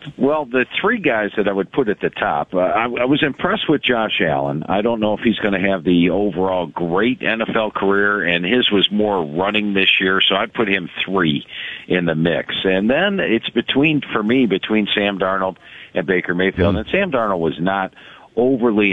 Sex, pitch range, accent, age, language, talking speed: male, 90-115 Hz, American, 50-69, English, 205 wpm